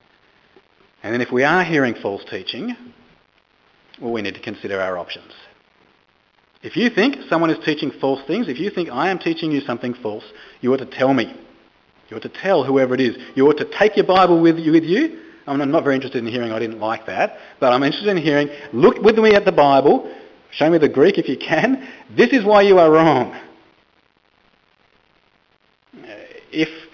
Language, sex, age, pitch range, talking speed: English, male, 40-59, 125-185 Hz, 195 wpm